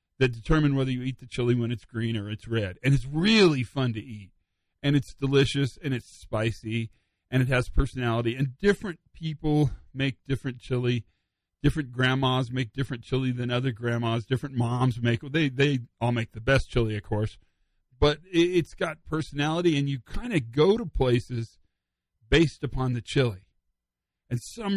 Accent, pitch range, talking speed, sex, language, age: American, 115-150 Hz, 175 wpm, male, English, 40-59